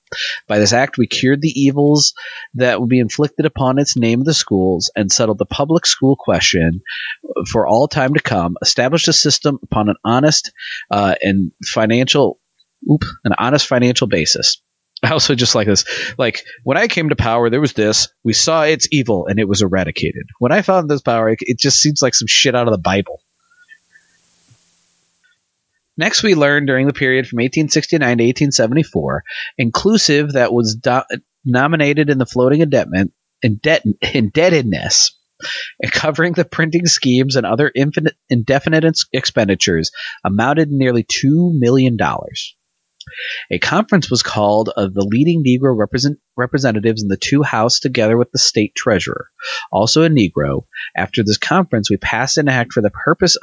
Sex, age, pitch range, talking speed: male, 30-49, 110-150 Hz, 165 wpm